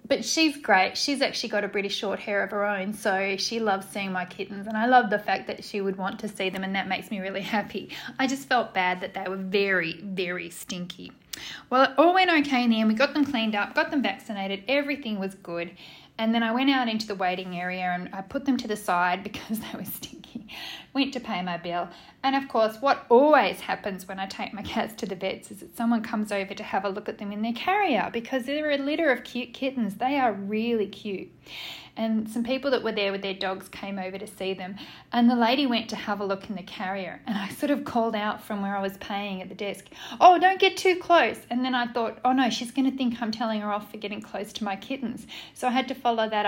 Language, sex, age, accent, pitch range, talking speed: English, female, 10-29, Australian, 195-255 Hz, 255 wpm